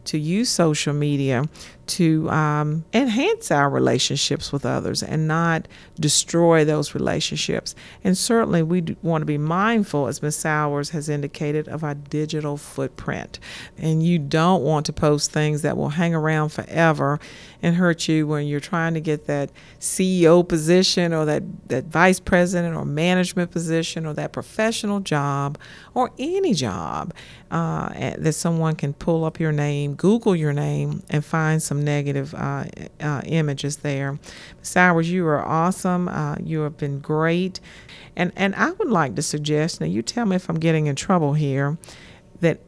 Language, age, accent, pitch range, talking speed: English, 50-69, American, 150-180 Hz, 165 wpm